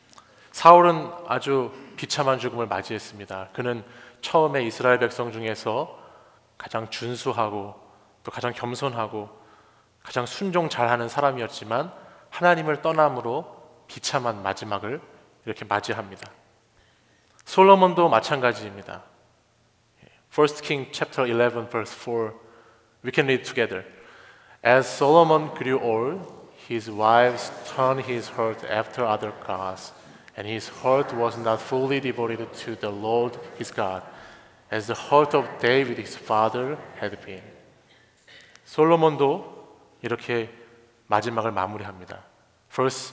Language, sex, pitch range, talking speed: English, male, 110-135 Hz, 105 wpm